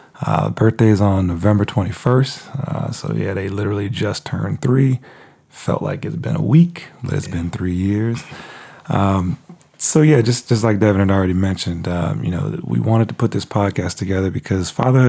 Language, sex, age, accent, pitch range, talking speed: English, male, 30-49, American, 100-145 Hz, 190 wpm